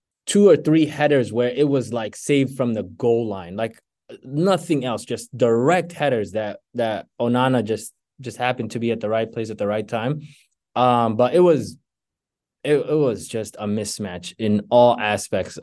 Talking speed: 185 wpm